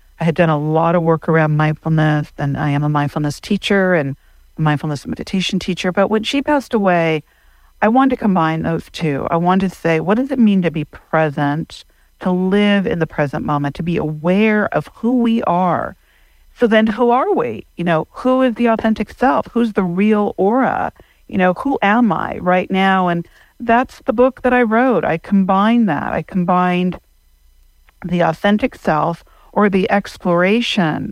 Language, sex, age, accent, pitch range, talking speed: English, female, 50-69, American, 155-205 Hz, 185 wpm